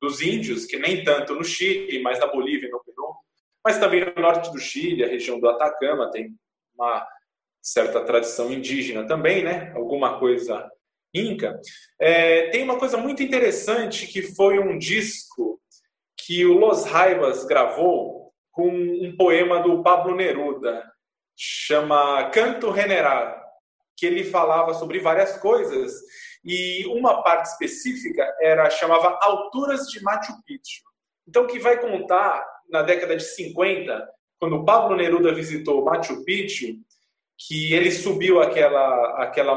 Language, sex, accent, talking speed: Portuguese, male, Brazilian, 140 wpm